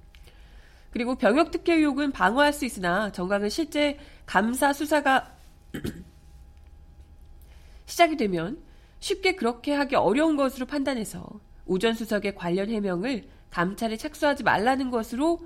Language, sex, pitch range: Korean, female, 185-295 Hz